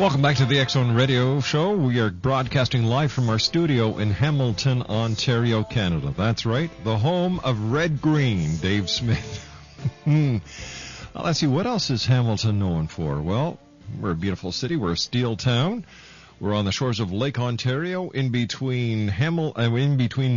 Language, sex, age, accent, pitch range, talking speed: English, male, 50-69, American, 105-140 Hz, 175 wpm